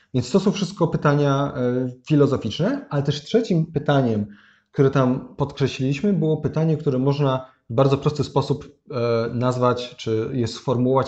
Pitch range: 125-155 Hz